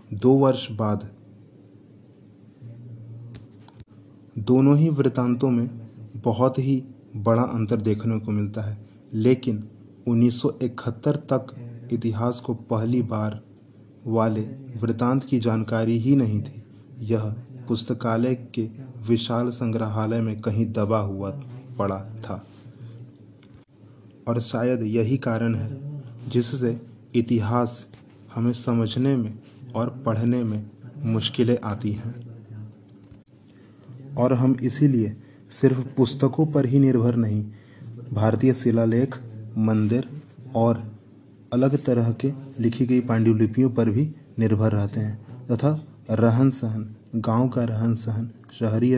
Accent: native